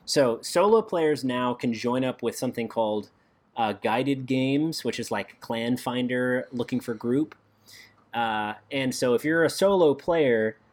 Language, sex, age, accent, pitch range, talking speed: English, male, 30-49, American, 115-140 Hz, 160 wpm